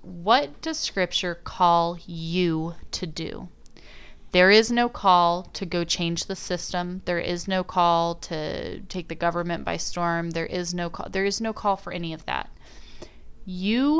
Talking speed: 165 wpm